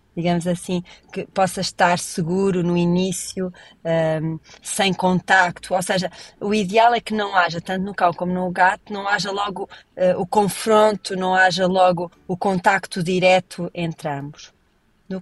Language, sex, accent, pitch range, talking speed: Portuguese, female, Brazilian, 175-215 Hz, 150 wpm